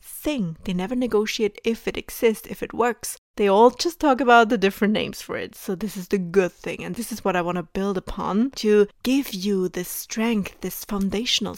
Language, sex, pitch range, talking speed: English, female, 195-250 Hz, 220 wpm